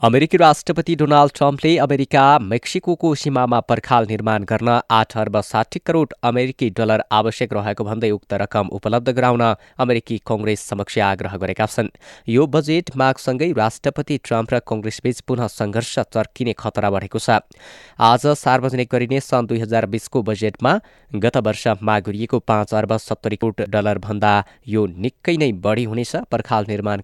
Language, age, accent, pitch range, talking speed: English, 20-39, Indian, 105-130 Hz, 90 wpm